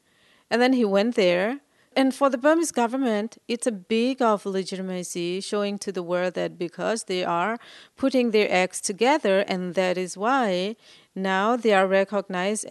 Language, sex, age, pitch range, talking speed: English, female, 40-59, 185-240 Hz, 165 wpm